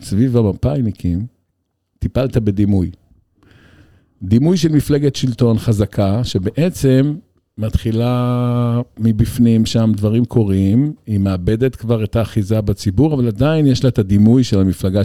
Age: 50-69